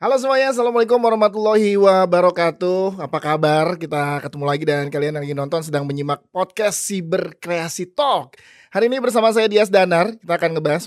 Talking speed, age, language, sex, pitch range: 160 wpm, 20-39, Indonesian, male, 150-195 Hz